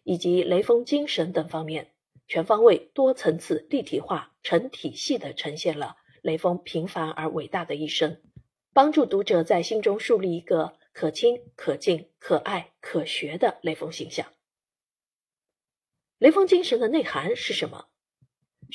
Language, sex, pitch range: Chinese, female, 165-255 Hz